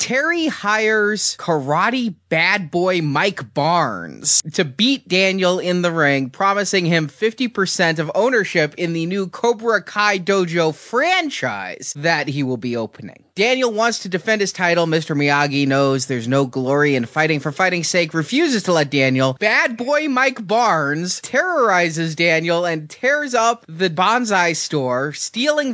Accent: American